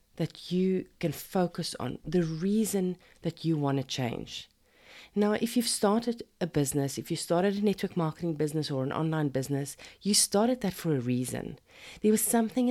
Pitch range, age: 145-195 Hz, 40-59